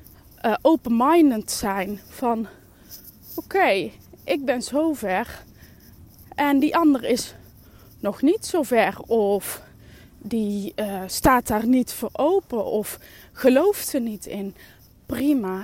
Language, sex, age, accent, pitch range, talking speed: Dutch, female, 20-39, Dutch, 200-270 Hz, 125 wpm